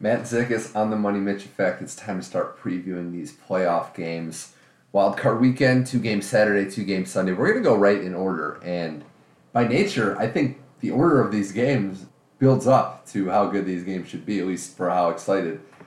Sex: male